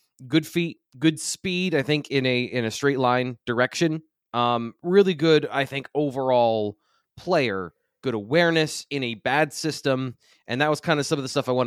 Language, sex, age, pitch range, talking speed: English, male, 20-39, 120-155 Hz, 190 wpm